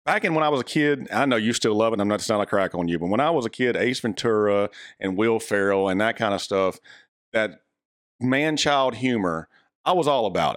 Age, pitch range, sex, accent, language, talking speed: 40-59, 95-120 Hz, male, American, English, 250 wpm